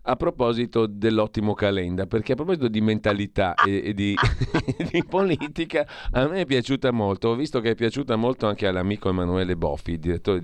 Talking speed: 175 wpm